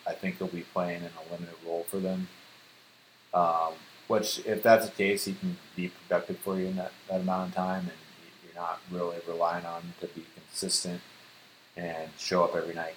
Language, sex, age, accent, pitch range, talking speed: English, male, 30-49, American, 85-90 Hz, 205 wpm